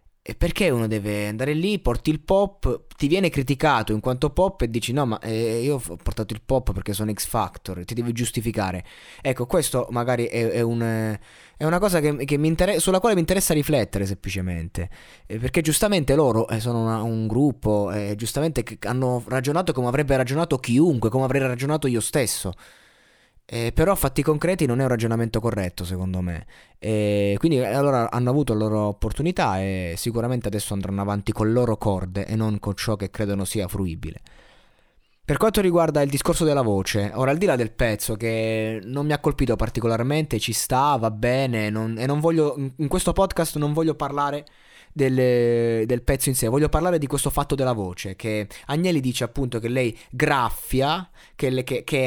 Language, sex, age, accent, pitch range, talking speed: Italian, male, 20-39, native, 110-145 Hz, 190 wpm